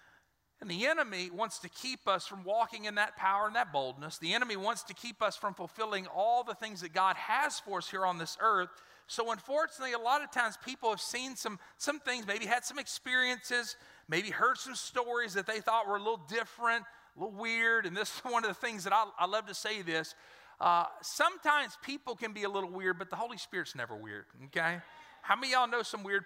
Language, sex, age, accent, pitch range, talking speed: English, male, 40-59, American, 185-245 Hz, 230 wpm